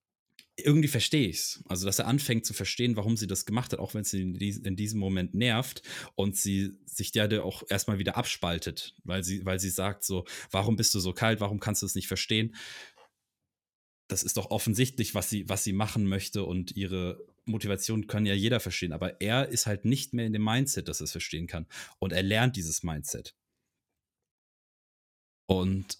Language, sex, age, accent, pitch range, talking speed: German, male, 30-49, German, 95-115 Hz, 195 wpm